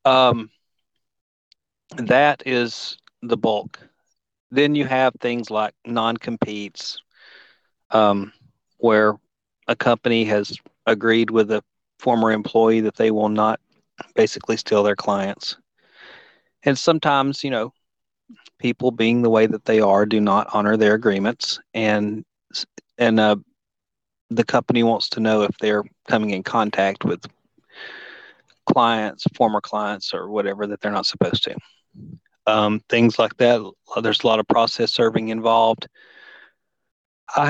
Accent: American